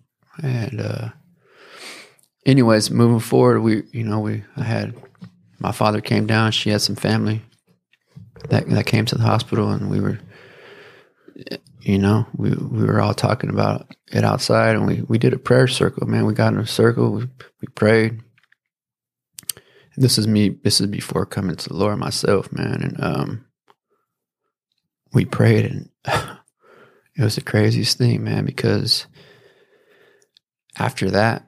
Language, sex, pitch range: English, male, 105-135 Hz